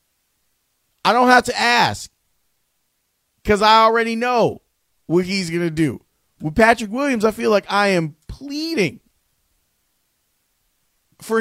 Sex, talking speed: male, 125 wpm